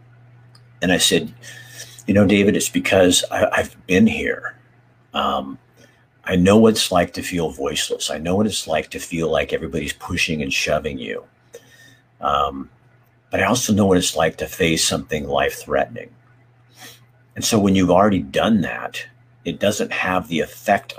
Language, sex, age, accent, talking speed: English, male, 50-69, American, 165 wpm